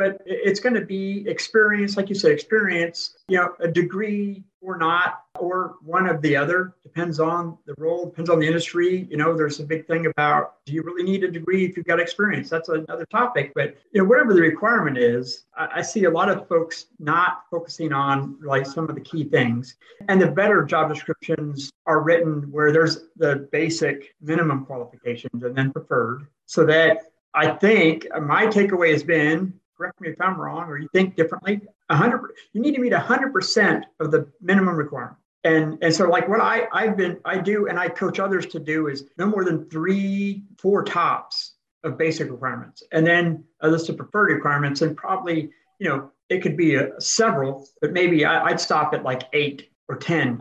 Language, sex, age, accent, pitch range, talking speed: English, male, 50-69, American, 155-185 Hz, 200 wpm